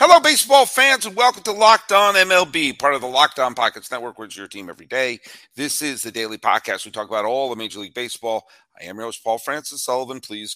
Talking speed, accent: 240 wpm, American